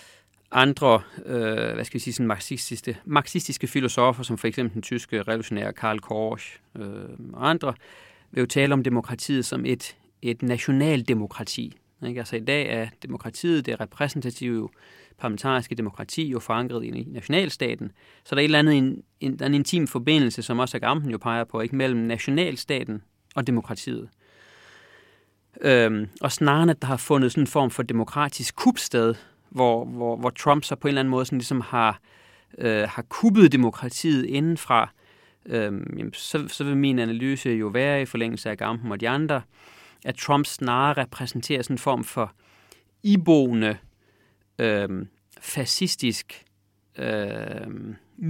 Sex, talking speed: male, 155 wpm